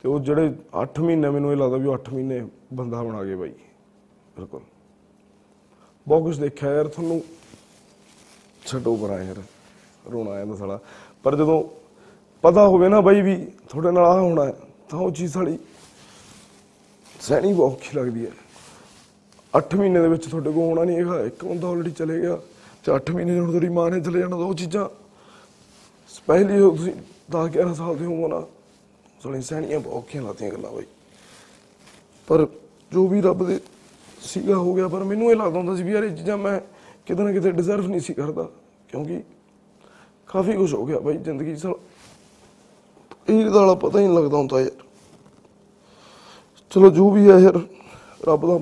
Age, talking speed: 20-39, 160 wpm